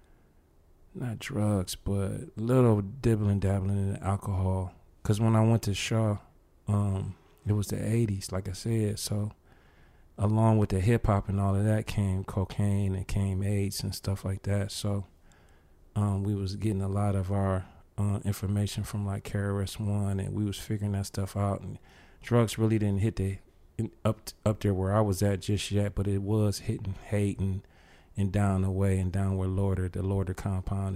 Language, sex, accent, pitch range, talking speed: English, male, American, 95-105 Hz, 185 wpm